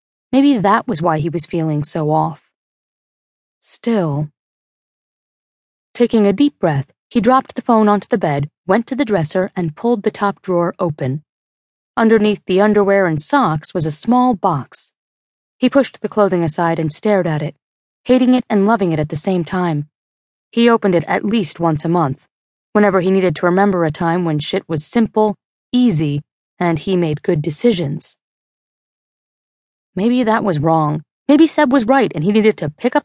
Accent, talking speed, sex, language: American, 175 wpm, female, English